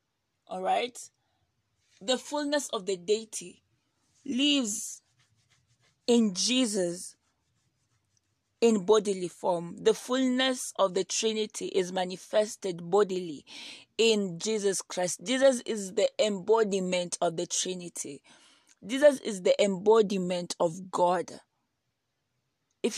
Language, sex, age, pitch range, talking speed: English, female, 20-39, 185-230 Hz, 100 wpm